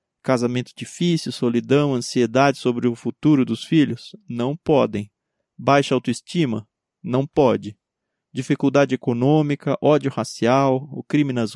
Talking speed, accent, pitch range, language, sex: 115 wpm, Brazilian, 120-145 Hz, Portuguese, male